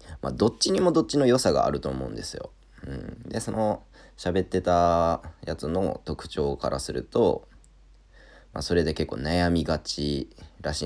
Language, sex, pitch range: Japanese, male, 75-95 Hz